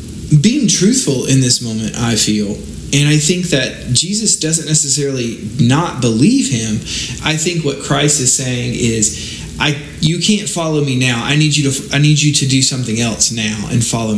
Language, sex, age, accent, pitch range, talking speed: English, male, 30-49, American, 115-145 Hz, 185 wpm